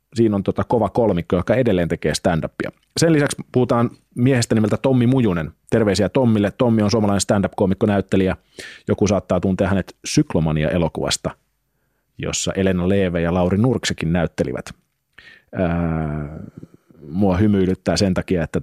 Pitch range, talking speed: 95-125 Hz, 125 wpm